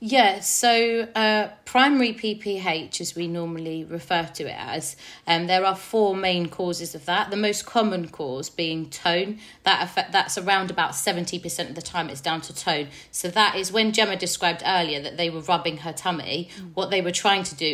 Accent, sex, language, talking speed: British, female, English, 195 wpm